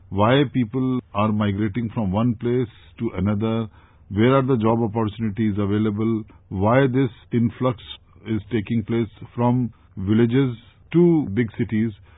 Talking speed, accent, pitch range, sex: 130 wpm, Indian, 105-130 Hz, male